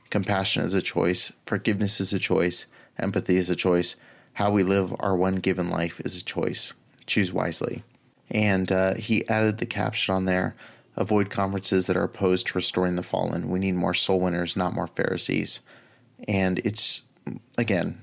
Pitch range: 90-100 Hz